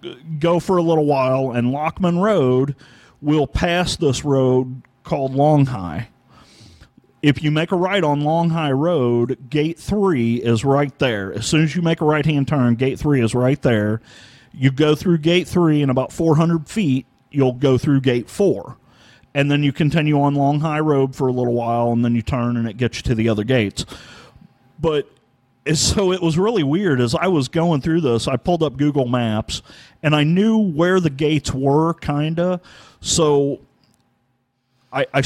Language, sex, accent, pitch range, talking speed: English, male, American, 130-160 Hz, 185 wpm